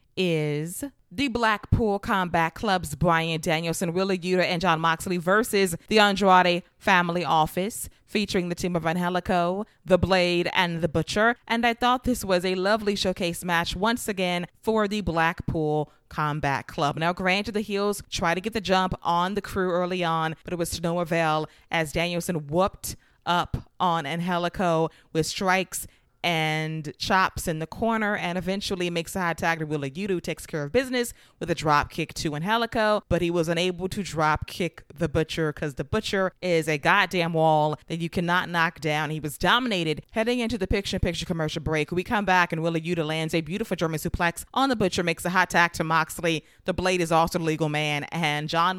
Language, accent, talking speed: English, American, 190 wpm